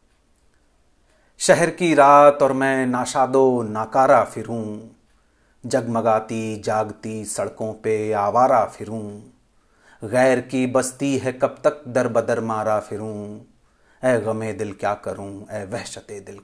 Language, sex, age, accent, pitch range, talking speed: Hindi, male, 40-59, native, 110-130 Hz, 120 wpm